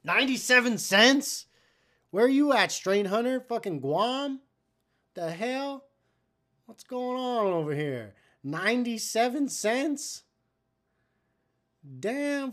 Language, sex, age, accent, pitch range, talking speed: English, male, 30-49, American, 140-205 Hz, 95 wpm